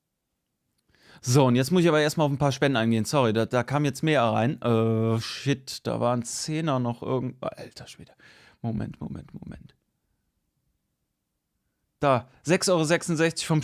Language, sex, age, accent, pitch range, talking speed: German, male, 30-49, German, 135-190 Hz, 160 wpm